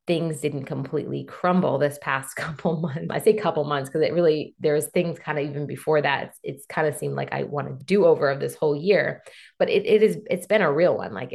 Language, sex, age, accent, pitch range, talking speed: English, female, 20-39, American, 145-175 Hz, 245 wpm